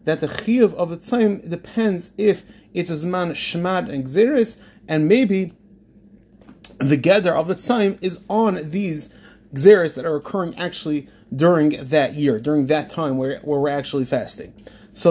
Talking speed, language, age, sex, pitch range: 165 wpm, English, 30-49, male, 150-200 Hz